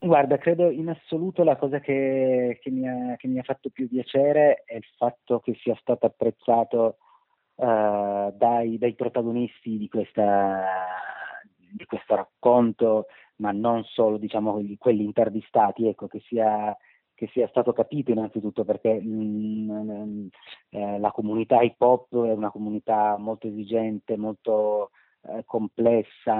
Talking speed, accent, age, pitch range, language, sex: 140 wpm, native, 30-49, 105-120 Hz, Italian, male